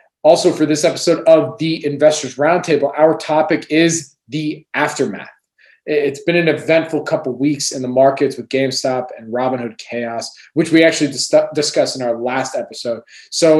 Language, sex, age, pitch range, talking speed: English, male, 20-39, 125-155 Hz, 165 wpm